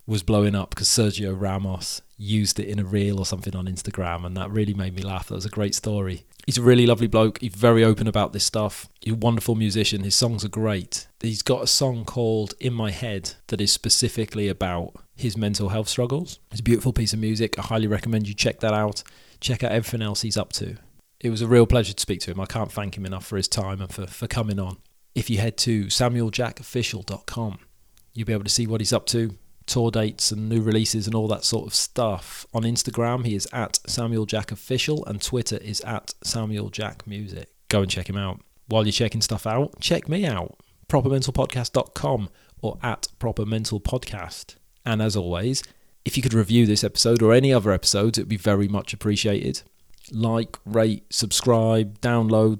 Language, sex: English, male